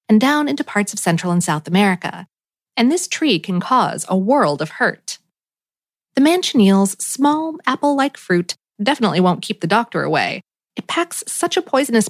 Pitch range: 195-280 Hz